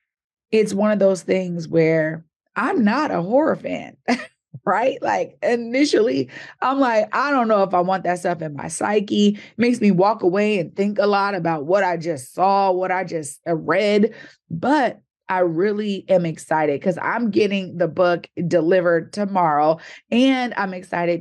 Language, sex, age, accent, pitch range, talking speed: English, female, 30-49, American, 170-210 Hz, 170 wpm